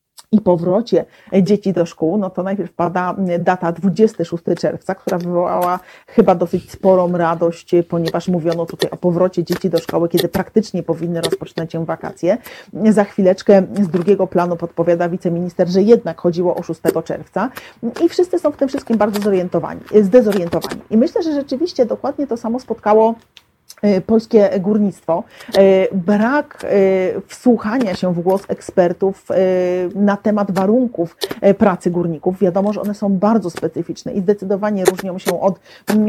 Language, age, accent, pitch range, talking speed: Polish, 40-59, native, 180-220 Hz, 145 wpm